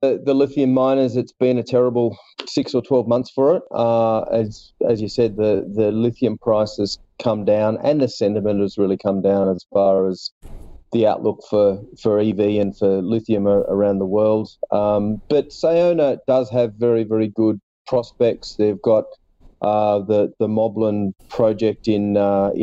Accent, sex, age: Australian, male, 40-59